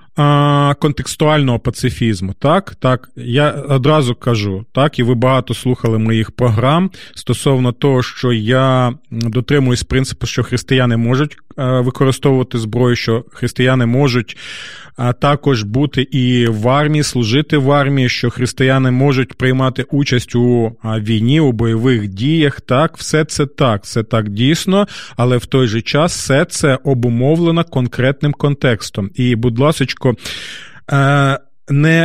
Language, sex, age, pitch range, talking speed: Ukrainian, male, 30-49, 120-145 Hz, 125 wpm